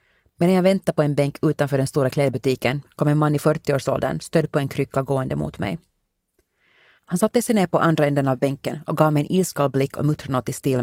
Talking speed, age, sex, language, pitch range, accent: 240 wpm, 30-49, female, Swedish, 135-165 Hz, Finnish